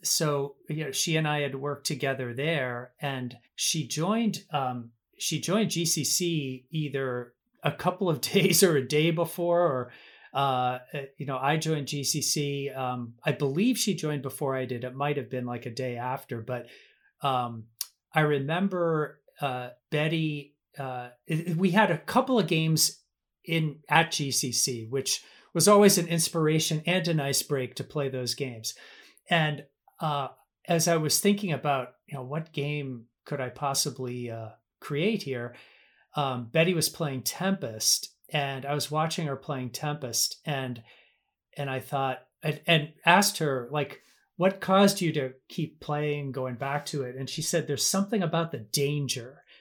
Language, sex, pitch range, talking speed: English, male, 130-165 Hz, 160 wpm